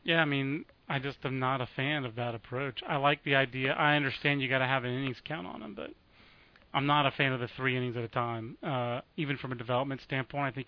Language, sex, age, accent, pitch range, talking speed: English, male, 30-49, American, 130-155 Hz, 265 wpm